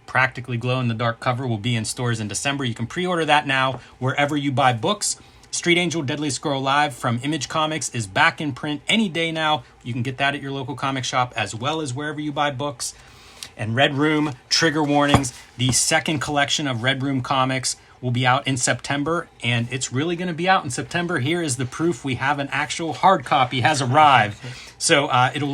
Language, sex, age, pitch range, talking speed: English, male, 30-49, 120-155 Hz, 220 wpm